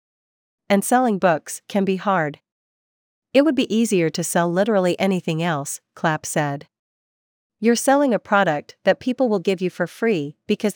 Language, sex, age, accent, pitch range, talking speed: English, female, 40-59, American, 165-205 Hz, 160 wpm